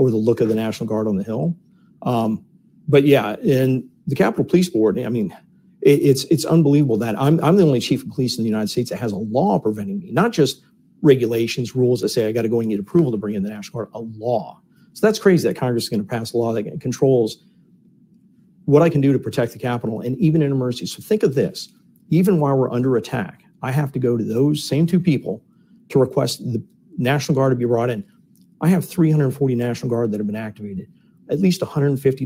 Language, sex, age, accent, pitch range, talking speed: English, male, 50-69, American, 115-165 Hz, 235 wpm